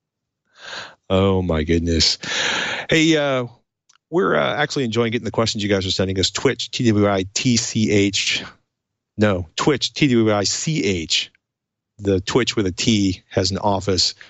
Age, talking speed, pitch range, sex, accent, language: 40-59, 125 wpm, 100-120 Hz, male, American, English